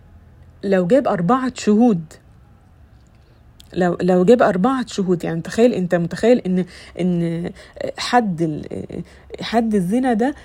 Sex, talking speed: female, 110 wpm